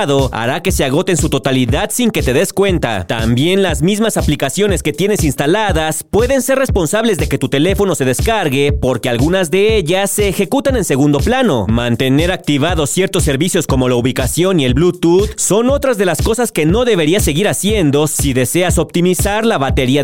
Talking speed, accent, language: 185 wpm, Mexican, Spanish